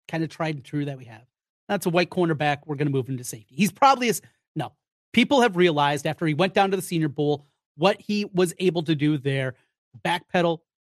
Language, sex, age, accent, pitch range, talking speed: English, male, 30-49, American, 145-195 Hz, 230 wpm